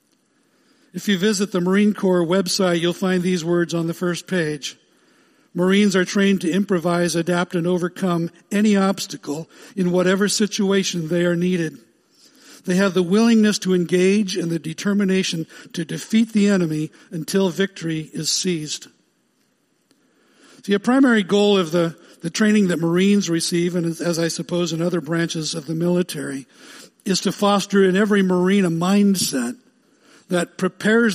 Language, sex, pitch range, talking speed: English, male, 175-210 Hz, 150 wpm